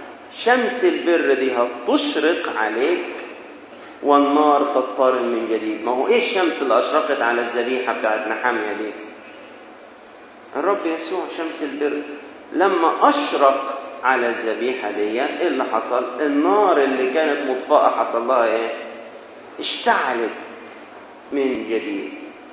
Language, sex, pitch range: Arabic, male, 130-195 Hz